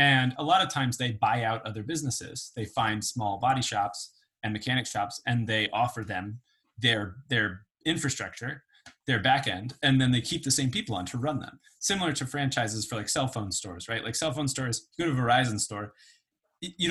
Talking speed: 200 wpm